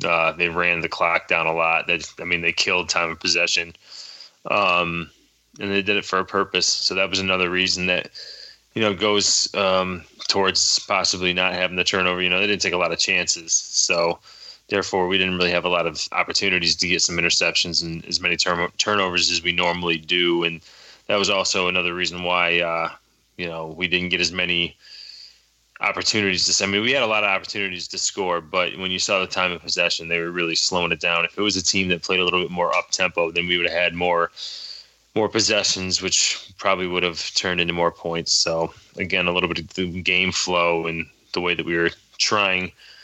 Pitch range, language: 85-95 Hz, English